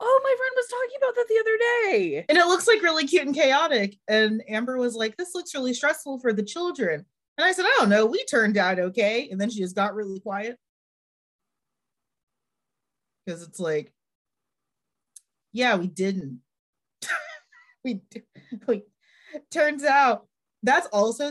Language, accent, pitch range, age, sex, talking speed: English, American, 200-275 Hz, 30-49, female, 165 wpm